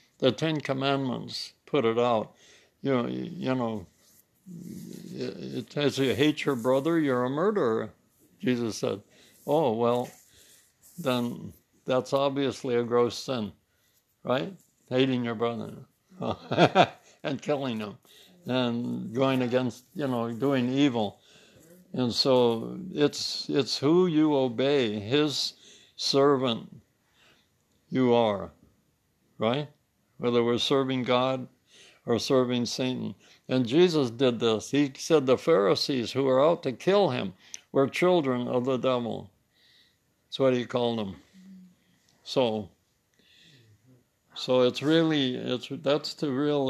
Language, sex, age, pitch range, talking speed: English, male, 60-79, 120-150 Hz, 120 wpm